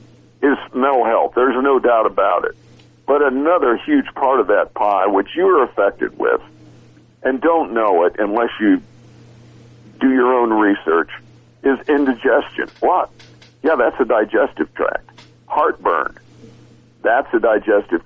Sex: male